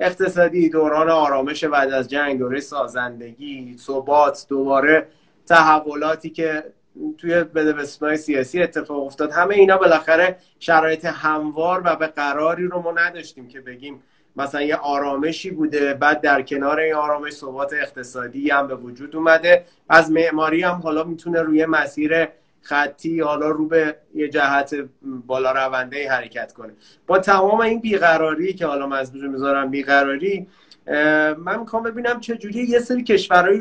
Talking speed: 140 wpm